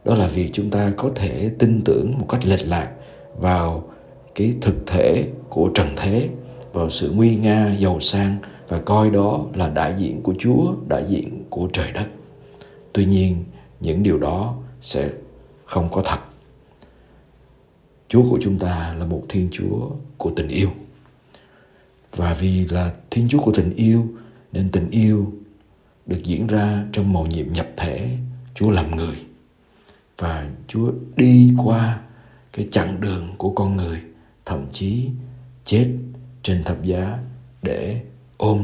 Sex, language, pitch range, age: male, Vietnamese, 90-120 Hz, 60-79